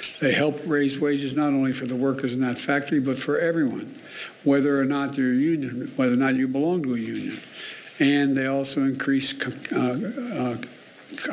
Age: 60-79